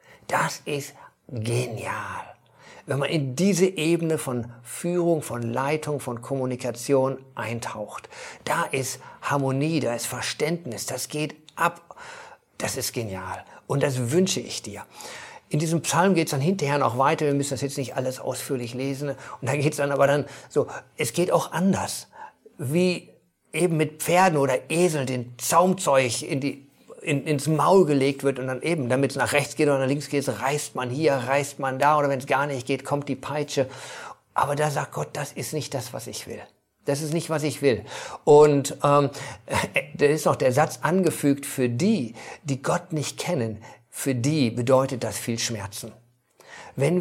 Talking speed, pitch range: 185 wpm, 130-160 Hz